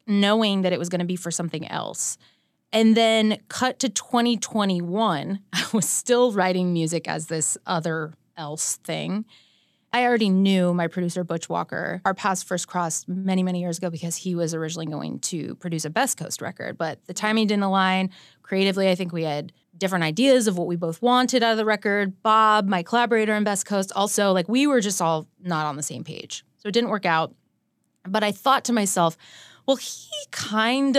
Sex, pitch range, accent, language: female, 170-220 Hz, American, English